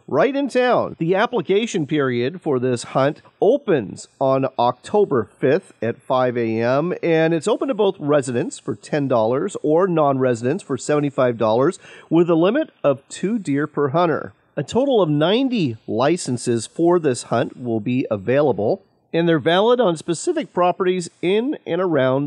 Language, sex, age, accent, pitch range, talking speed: English, male, 40-59, American, 135-190 Hz, 150 wpm